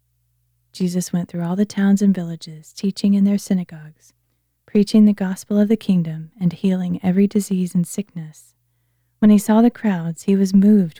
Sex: female